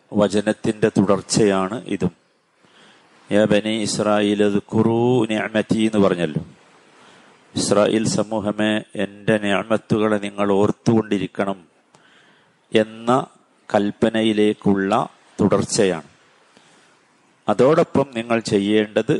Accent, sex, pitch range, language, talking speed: native, male, 100-120 Hz, Malayalam, 60 wpm